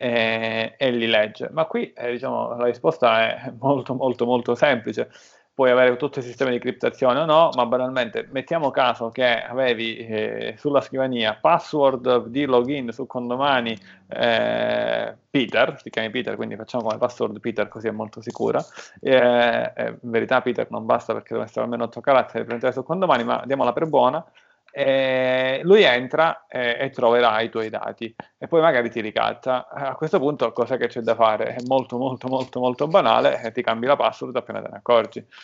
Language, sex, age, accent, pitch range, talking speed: Italian, male, 30-49, native, 115-130 Hz, 185 wpm